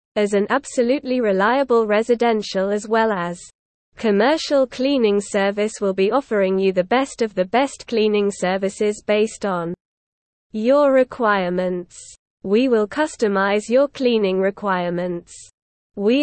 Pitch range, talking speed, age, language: 195-250 Hz, 120 wpm, 20-39, English